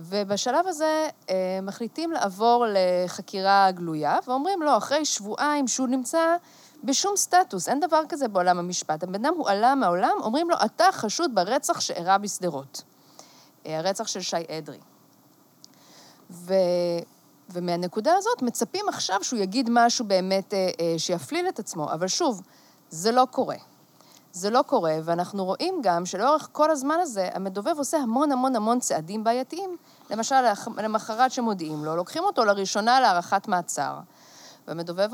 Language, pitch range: Hebrew, 185-295 Hz